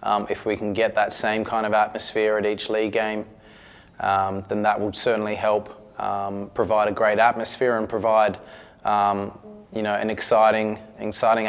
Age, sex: 20-39, male